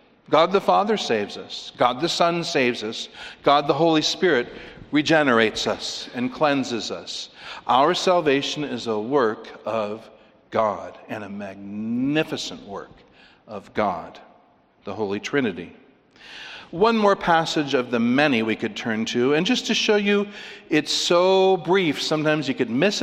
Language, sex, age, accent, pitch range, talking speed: English, male, 60-79, American, 120-190 Hz, 150 wpm